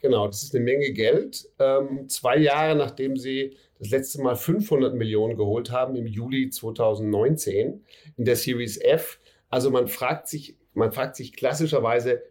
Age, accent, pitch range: 40-59, German, 120-155 Hz